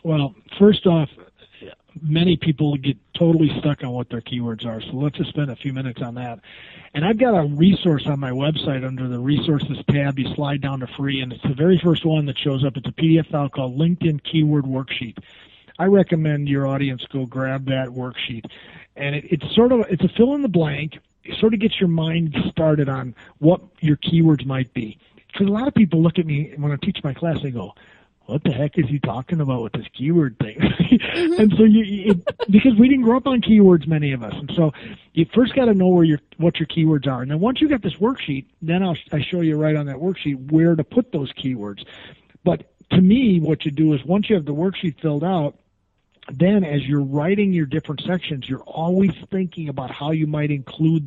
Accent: American